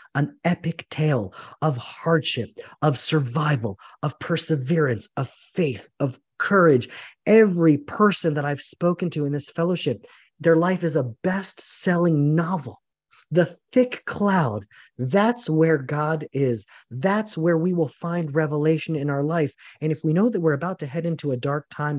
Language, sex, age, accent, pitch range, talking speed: English, male, 30-49, American, 135-160 Hz, 155 wpm